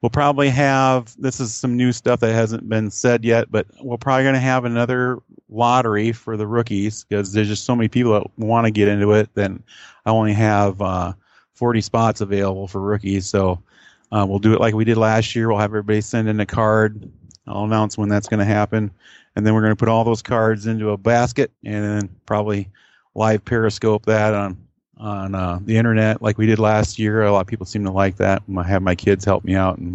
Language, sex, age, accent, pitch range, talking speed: English, male, 40-59, American, 95-115 Hz, 230 wpm